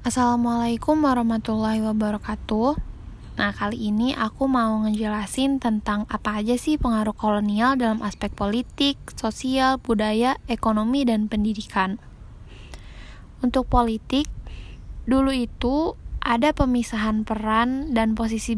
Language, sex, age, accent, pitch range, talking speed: Indonesian, female, 10-29, native, 215-250 Hz, 105 wpm